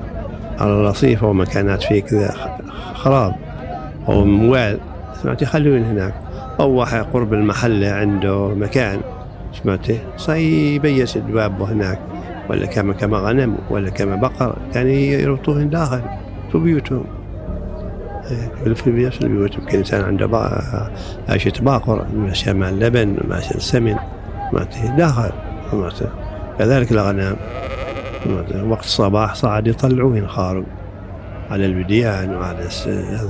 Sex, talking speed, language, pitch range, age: male, 105 wpm, Arabic, 95-120 Hz, 50-69